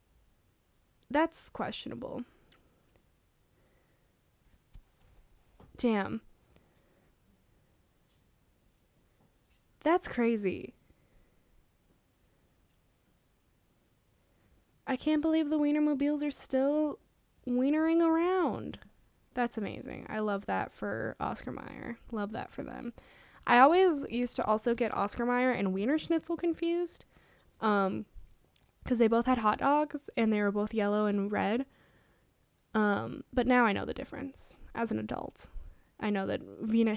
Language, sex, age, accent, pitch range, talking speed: English, female, 10-29, American, 215-290 Hz, 110 wpm